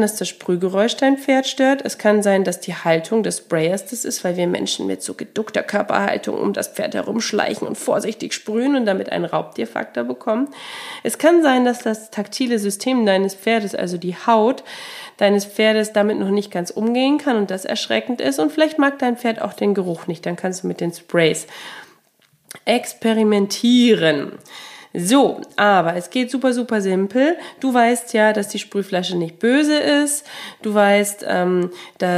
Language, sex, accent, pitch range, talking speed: German, female, German, 180-245 Hz, 175 wpm